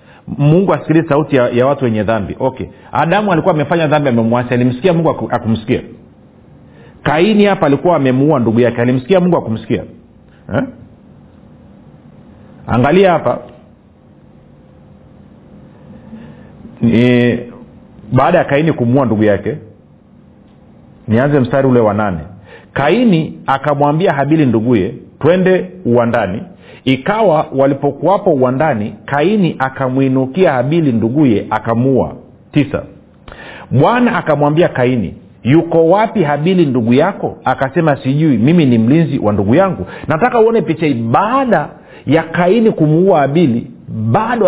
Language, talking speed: Swahili, 110 wpm